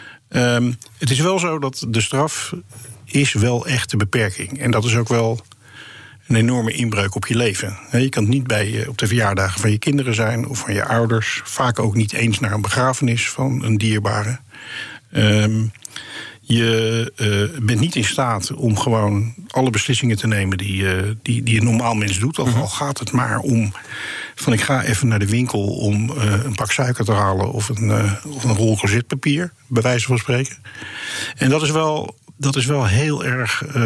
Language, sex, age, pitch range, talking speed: Dutch, male, 50-69, 110-130 Hz, 195 wpm